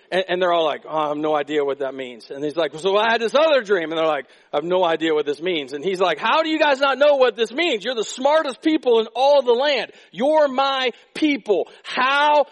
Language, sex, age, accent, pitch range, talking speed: English, male, 40-59, American, 185-310 Hz, 260 wpm